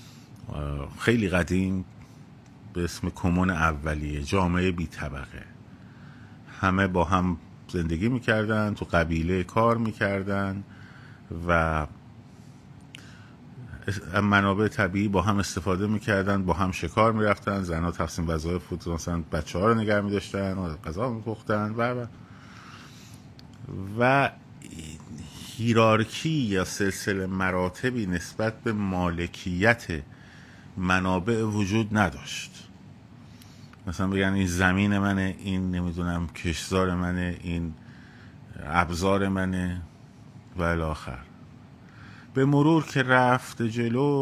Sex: male